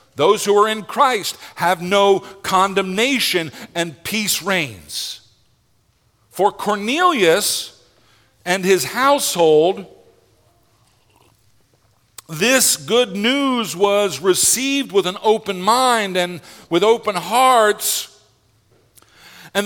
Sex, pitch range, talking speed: male, 185-240 Hz, 90 wpm